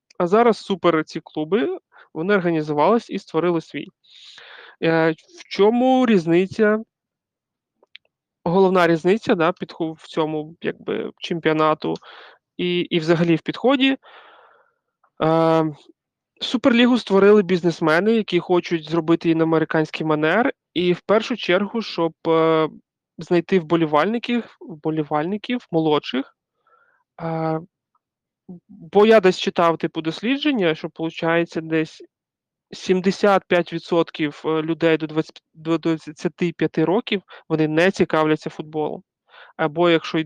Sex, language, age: male, Ukrainian, 30-49